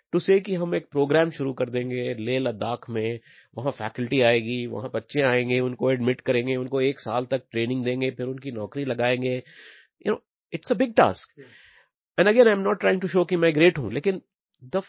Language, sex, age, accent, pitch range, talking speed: English, male, 30-49, Indian, 125-185 Hz, 160 wpm